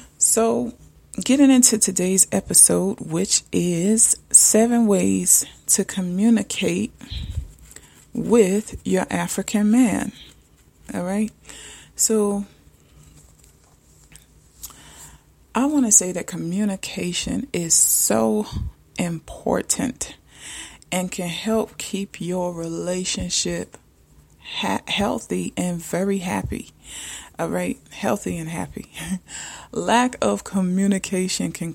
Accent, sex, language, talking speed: American, female, English, 85 wpm